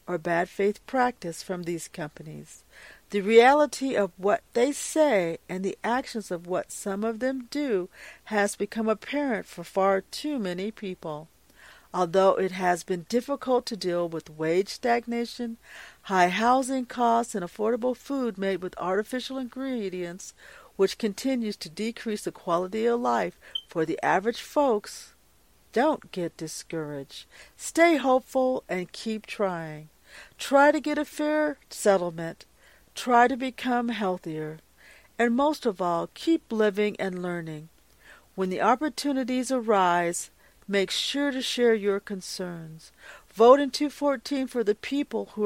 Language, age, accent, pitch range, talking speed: English, 50-69, American, 180-250 Hz, 140 wpm